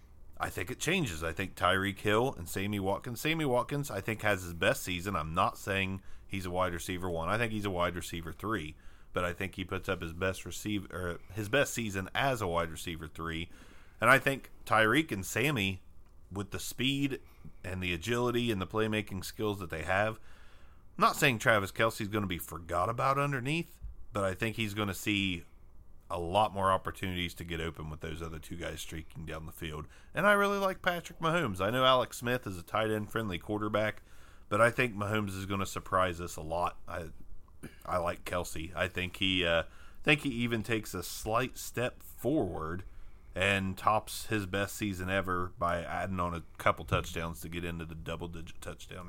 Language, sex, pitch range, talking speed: English, male, 85-110 Hz, 200 wpm